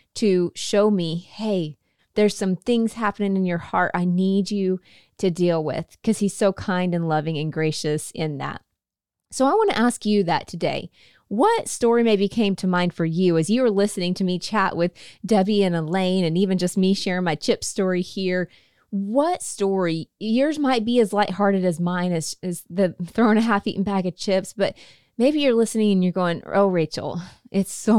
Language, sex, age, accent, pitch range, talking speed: English, female, 20-39, American, 165-205 Hz, 195 wpm